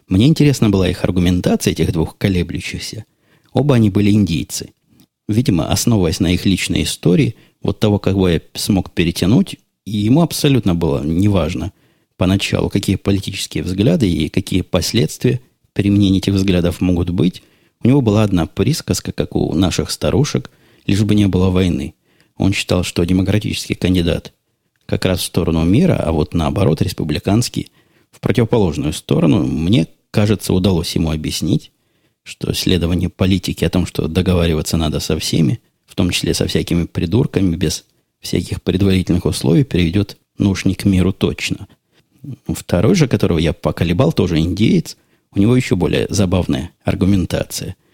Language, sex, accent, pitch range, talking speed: Russian, male, native, 85-105 Hz, 145 wpm